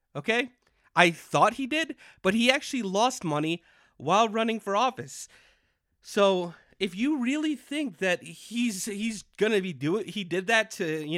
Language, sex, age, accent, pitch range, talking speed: English, male, 30-49, American, 170-240 Hz, 165 wpm